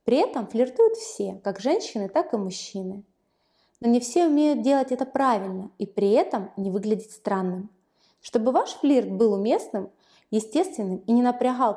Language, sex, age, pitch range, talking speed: Russian, female, 20-39, 205-285 Hz, 160 wpm